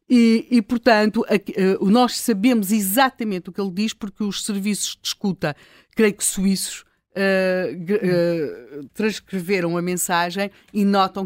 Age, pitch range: 50-69, 160-200 Hz